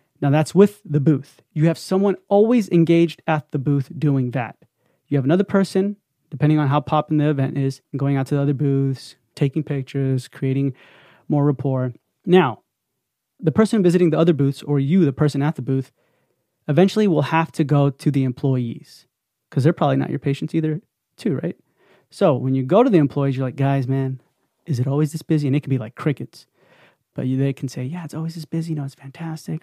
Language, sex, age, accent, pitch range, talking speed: English, male, 30-49, American, 135-170 Hz, 210 wpm